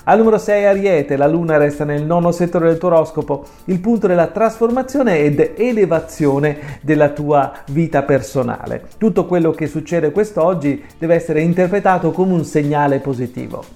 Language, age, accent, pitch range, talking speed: Italian, 40-59, native, 145-195 Hz, 155 wpm